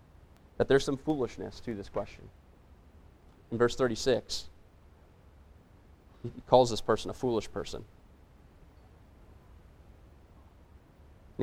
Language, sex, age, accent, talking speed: English, male, 30-49, American, 95 wpm